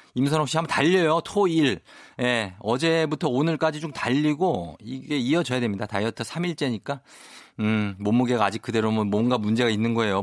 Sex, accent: male, native